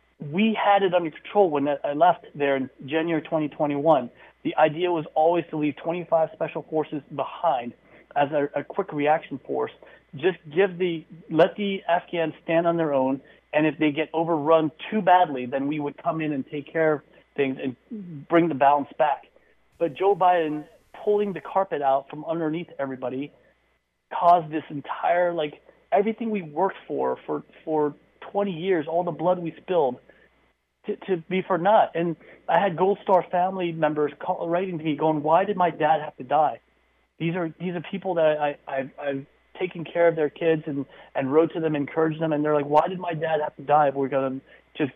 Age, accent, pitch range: 30-49, American, 145-175 Hz